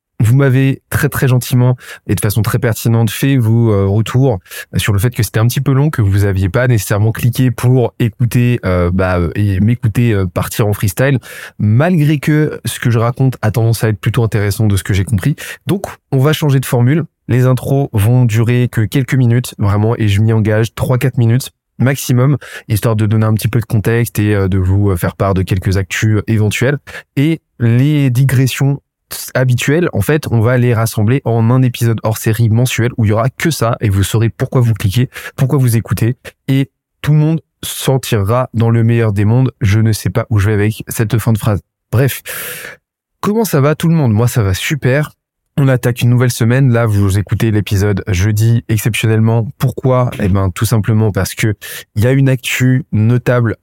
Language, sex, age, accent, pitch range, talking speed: French, male, 20-39, French, 105-130 Hz, 200 wpm